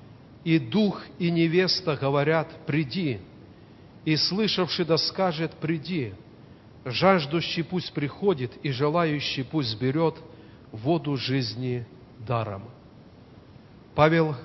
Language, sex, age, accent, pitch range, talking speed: Russian, male, 40-59, native, 130-170 Hz, 90 wpm